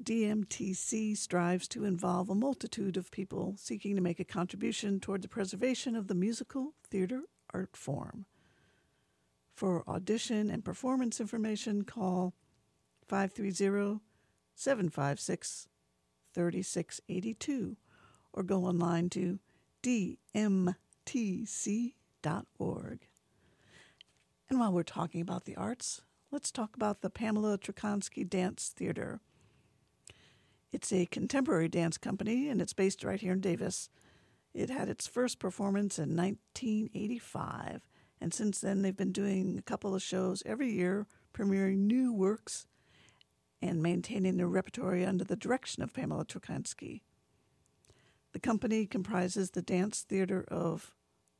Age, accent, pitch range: 60-79, American, 180-220 Hz